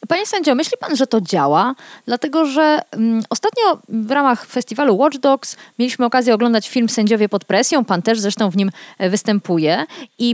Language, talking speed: Polish, 170 wpm